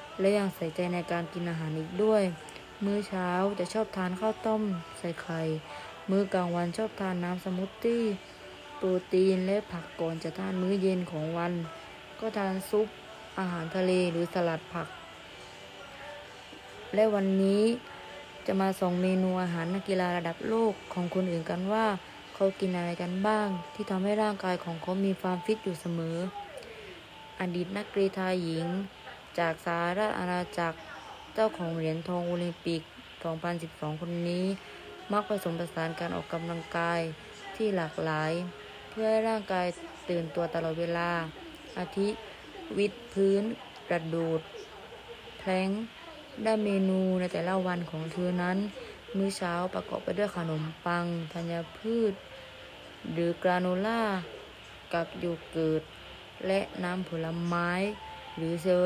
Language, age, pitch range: Thai, 20-39, 170-200 Hz